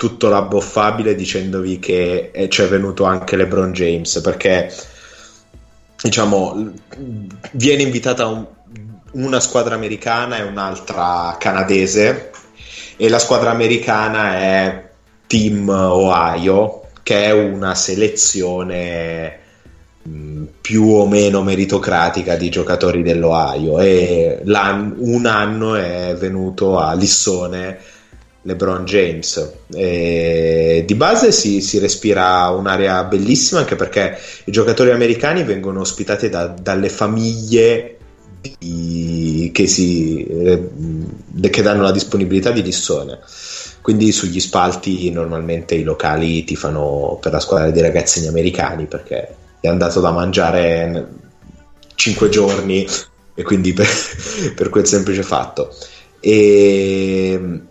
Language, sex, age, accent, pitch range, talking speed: Italian, male, 20-39, native, 90-105 Hz, 110 wpm